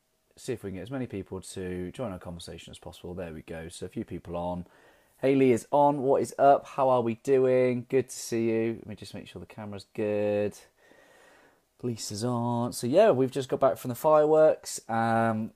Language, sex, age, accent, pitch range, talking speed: English, male, 20-39, British, 95-120 Hz, 215 wpm